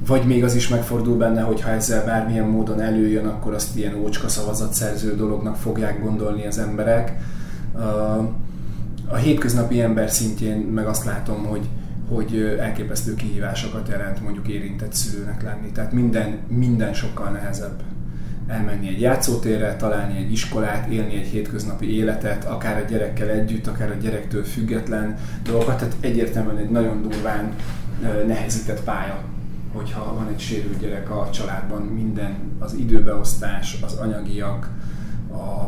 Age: 30-49